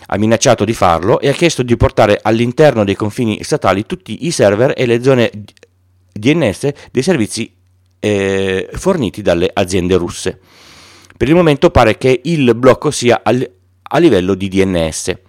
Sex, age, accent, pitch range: male, 40-59, native, 95-120 Hz